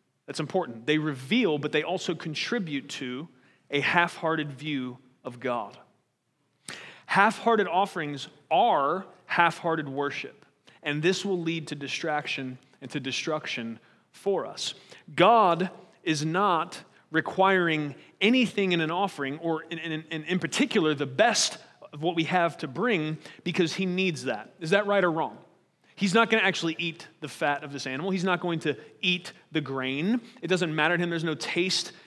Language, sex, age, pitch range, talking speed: English, male, 30-49, 145-185 Hz, 160 wpm